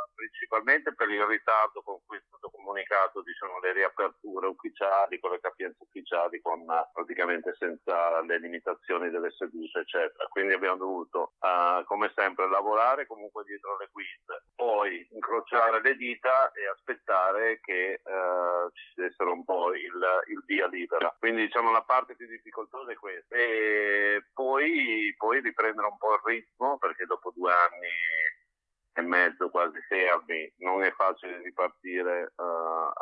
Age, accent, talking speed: 50-69, native, 145 wpm